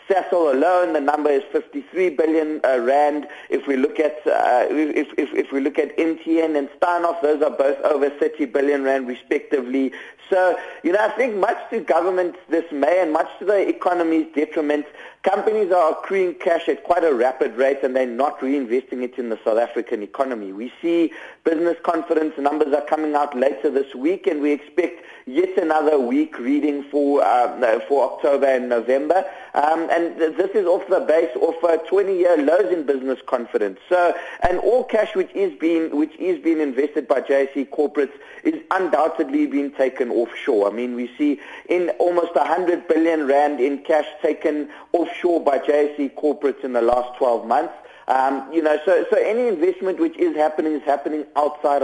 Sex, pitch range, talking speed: male, 145-180 Hz, 185 wpm